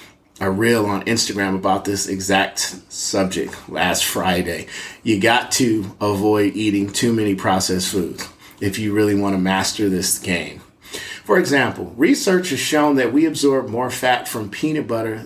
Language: English